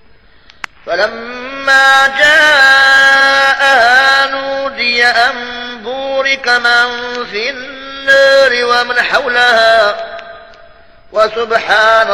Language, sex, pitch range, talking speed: Arabic, male, 225-275 Hz, 55 wpm